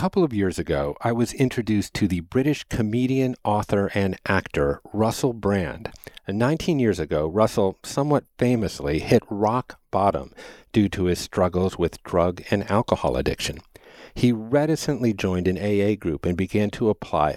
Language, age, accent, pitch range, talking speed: English, 50-69, American, 90-120 Hz, 160 wpm